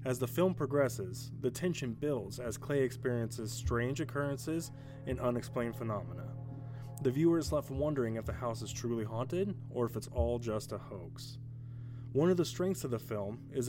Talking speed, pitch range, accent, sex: 180 wpm, 115-135 Hz, American, male